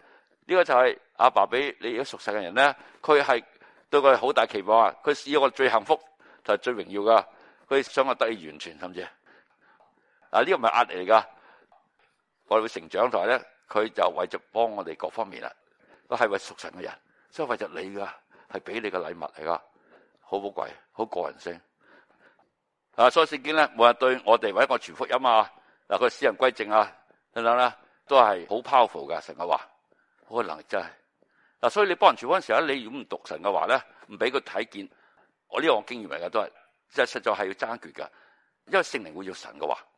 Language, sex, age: Chinese, male, 60-79